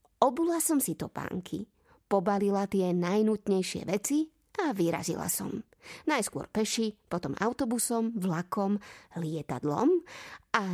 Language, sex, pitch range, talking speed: Slovak, female, 175-230 Hz, 105 wpm